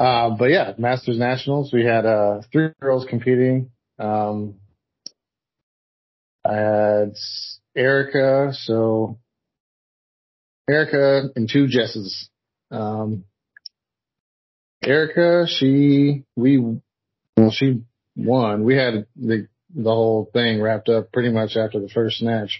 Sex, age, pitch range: male, 40-59, 105-130 Hz